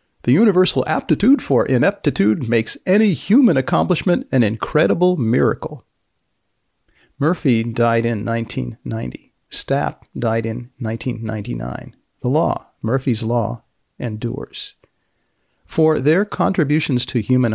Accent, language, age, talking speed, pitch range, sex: American, English, 50-69, 105 wpm, 115-145 Hz, male